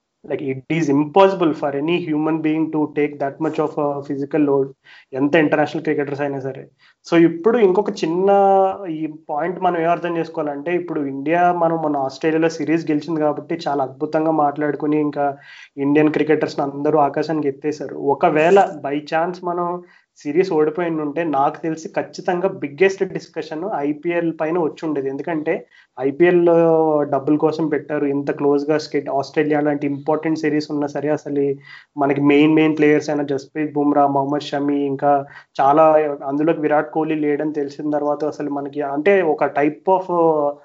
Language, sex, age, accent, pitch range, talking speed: Telugu, male, 20-39, native, 145-165 Hz, 155 wpm